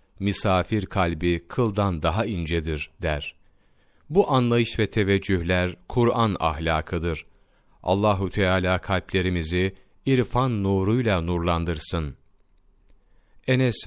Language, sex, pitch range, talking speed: Turkish, male, 85-110 Hz, 80 wpm